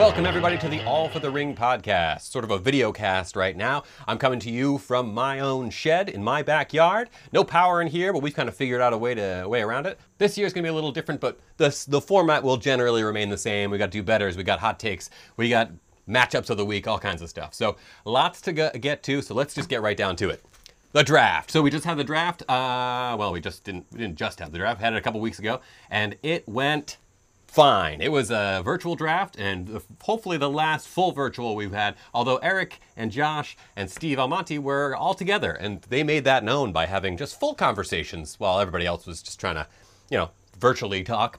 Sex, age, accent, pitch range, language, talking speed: male, 30-49, American, 100-150 Hz, English, 245 wpm